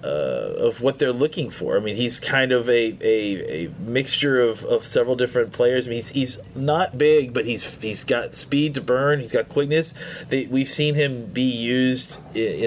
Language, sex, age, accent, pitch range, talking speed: English, male, 30-49, American, 115-145 Hz, 205 wpm